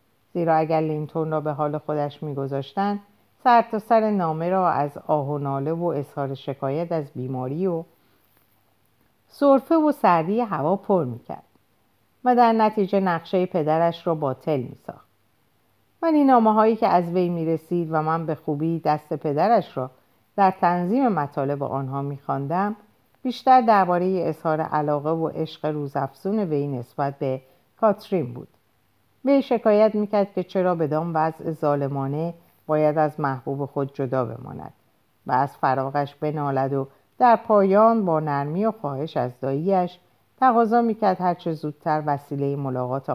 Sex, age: female, 50-69